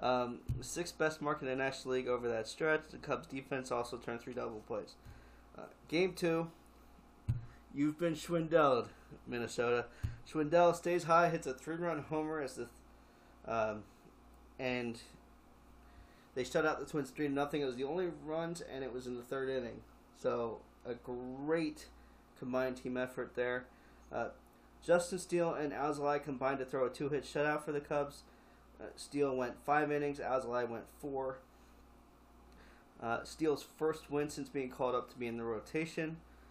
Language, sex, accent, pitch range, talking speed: English, male, American, 115-145 Hz, 165 wpm